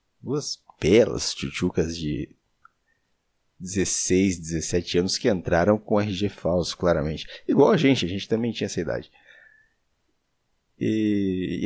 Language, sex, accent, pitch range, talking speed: Portuguese, male, Brazilian, 90-125 Hz, 125 wpm